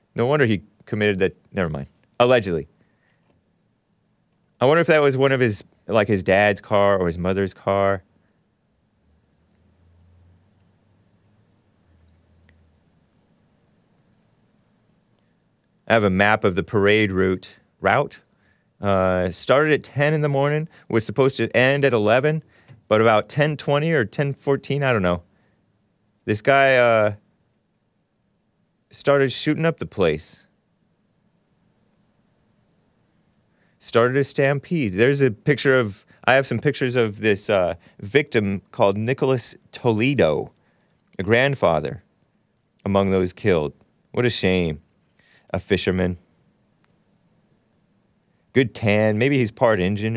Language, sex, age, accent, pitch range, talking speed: English, male, 30-49, American, 95-130 Hz, 115 wpm